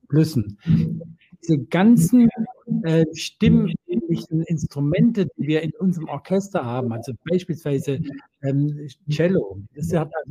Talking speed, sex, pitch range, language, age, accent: 100 wpm, male, 145-170 Hz, German, 50-69, German